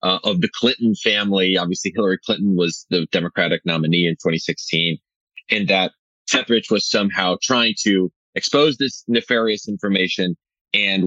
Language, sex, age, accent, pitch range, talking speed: English, male, 30-49, American, 90-115 Hz, 140 wpm